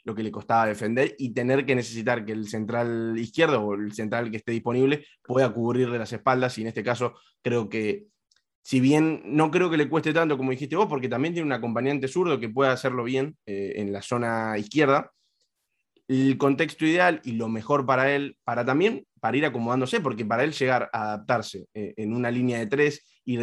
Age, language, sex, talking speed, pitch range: 20-39, Spanish, male, 210 wpm, 115-140 Hz